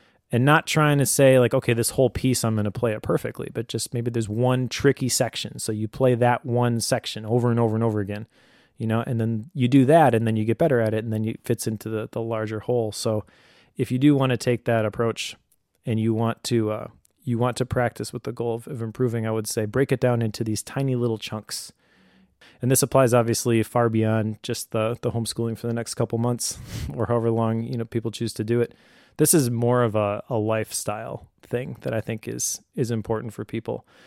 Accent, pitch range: American, 110-125 Hz